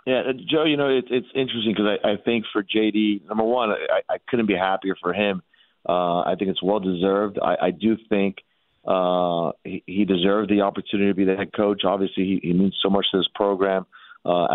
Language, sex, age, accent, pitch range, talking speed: English, male, 40-59, American, 95-105 Hz, 215 wpm